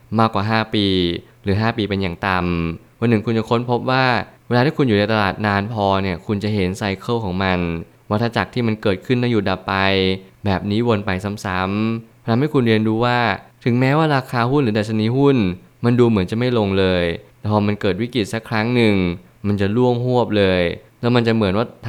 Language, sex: Thai, male